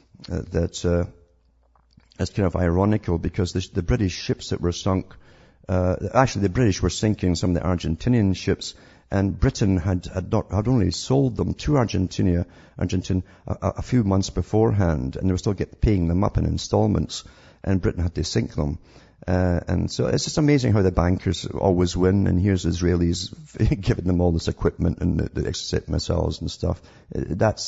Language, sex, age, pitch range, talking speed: English, male, 50-69, 85-100 Hz, 185 wpm